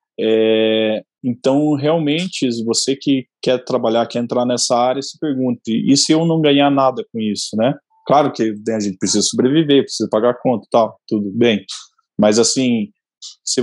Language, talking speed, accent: Portuguese, 165 wpm, Brazilian